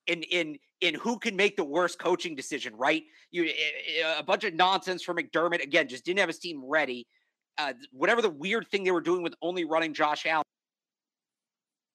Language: English